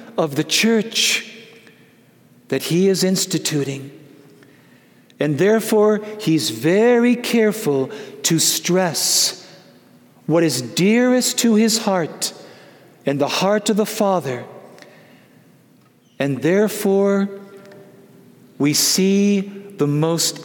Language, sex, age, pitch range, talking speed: English, male, 60-79, 155-220 Hz, 95 wpm